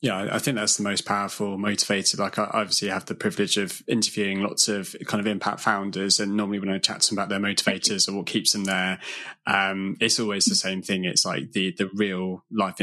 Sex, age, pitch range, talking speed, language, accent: male, 20-39, 95-105 Hz, 230 wpm, English, British